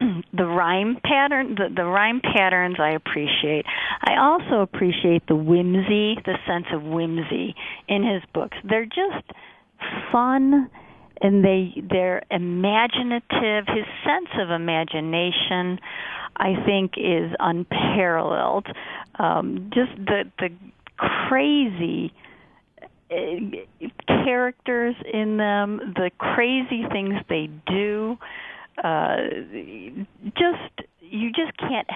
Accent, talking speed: American, 100 wpm